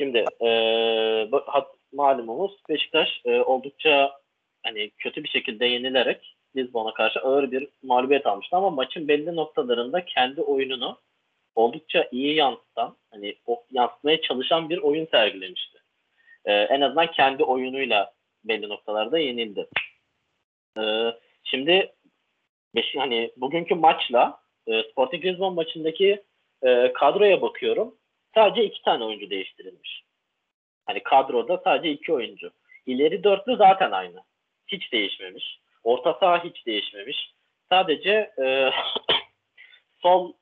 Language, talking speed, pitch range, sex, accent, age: Turkish, 115 wpm, 125-185 Hz, male, native, 30-49